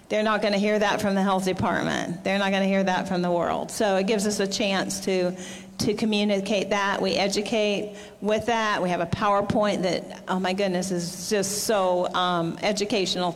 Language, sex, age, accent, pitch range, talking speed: English, female, 40-59, American, 190-215 Hz, 200 wpm